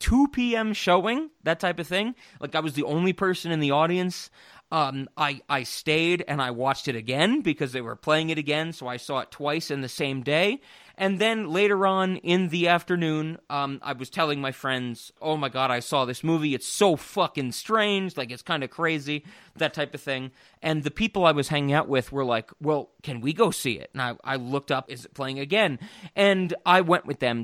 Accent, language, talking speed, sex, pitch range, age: American, English, 225 wpm, male, 135-195 Hz, 30-49